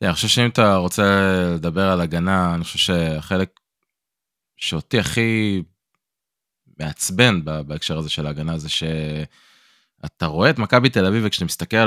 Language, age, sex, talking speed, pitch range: Hebrew, 20-39, male, 135 wpm, 85-110 Hz